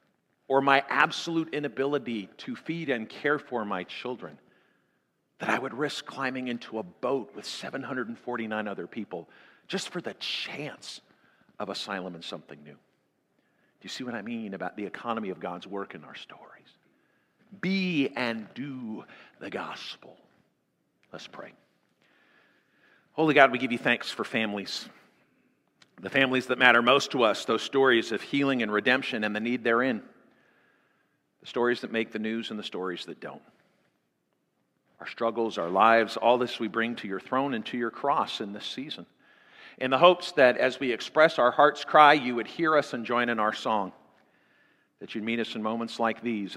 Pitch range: 105-130 Hz